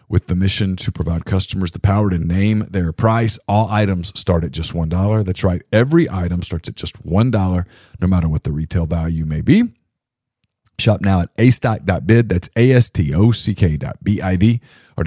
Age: 40-59